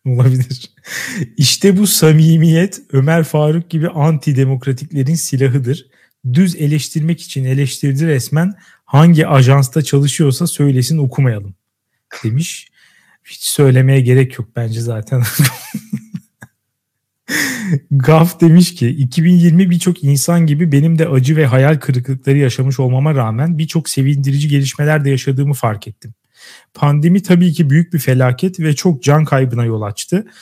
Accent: native